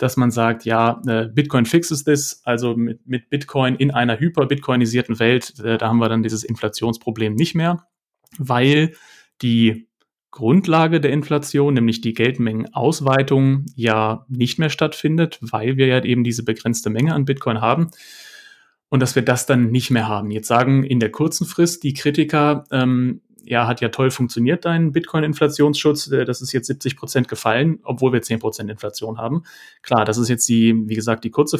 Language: German